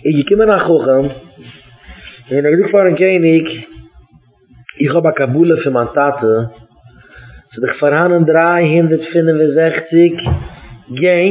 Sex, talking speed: male, 95 wpm